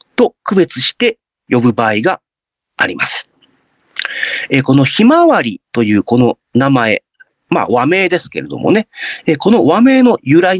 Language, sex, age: Japanese, male, 40-59